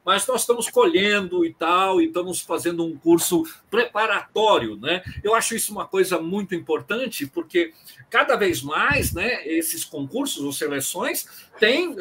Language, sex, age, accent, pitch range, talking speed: Portuguese, male, 60-79, Brazilian, 165-270 Hz, 150 wpm